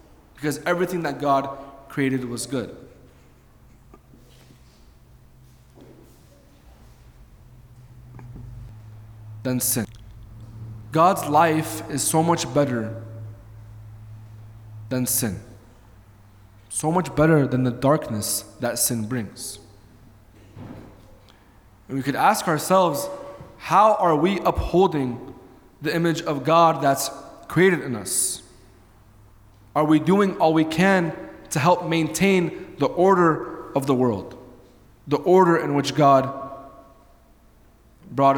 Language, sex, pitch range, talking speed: English, male, 110-145 Hz, 100 wpm